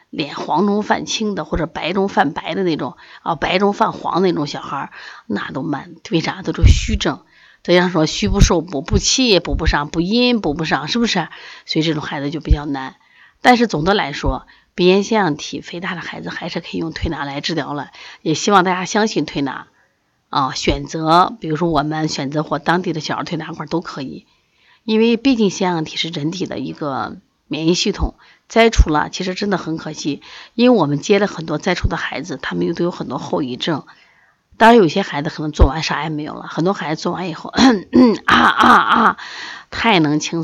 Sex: female